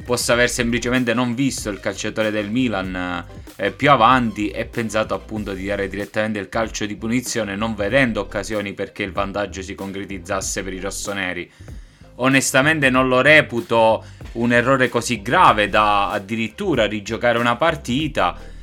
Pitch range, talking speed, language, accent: 100-125 Hz, 150 wpm, Italian, native